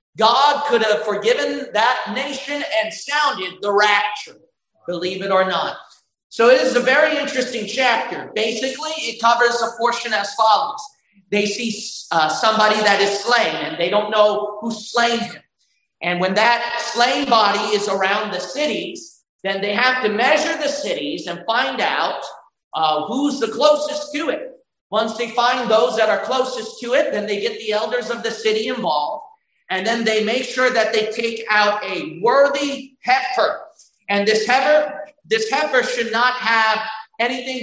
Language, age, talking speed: English, 40-59, 170 wpm